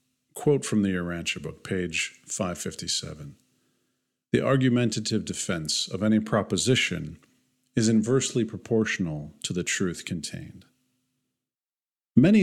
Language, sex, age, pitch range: English, male, 40-59, 100-130 Hz